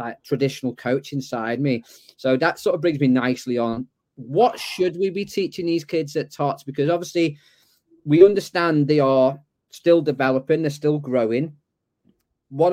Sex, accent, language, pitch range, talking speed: male, British, English, 125-155 Hz, 160 wpm